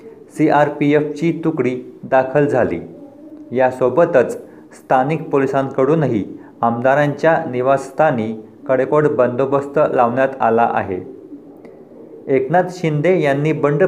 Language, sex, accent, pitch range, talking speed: Marathi, male, native, 125-150 Hz, 90 wpm